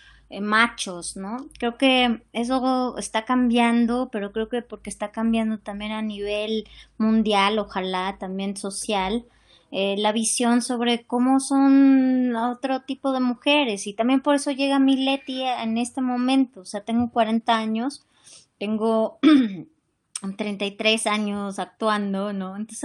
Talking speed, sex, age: 135 wpm, male, 20-39